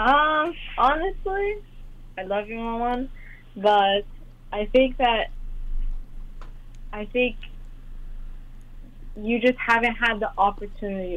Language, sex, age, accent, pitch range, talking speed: English, female, 20-39, American, 185-230 Hz, 95 wpm